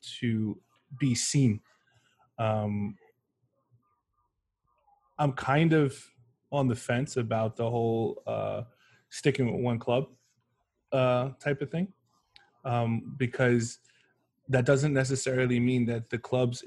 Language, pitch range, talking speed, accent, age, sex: English, 115-130 Hz, 110 wpm, American, 20-39, male